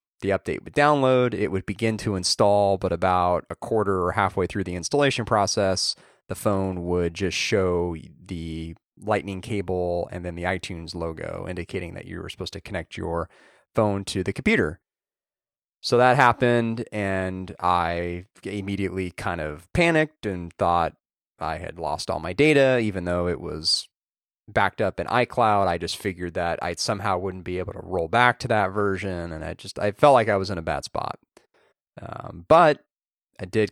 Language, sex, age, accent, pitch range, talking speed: English, male, 30-49, American, 90-105 Hz, 180 wpm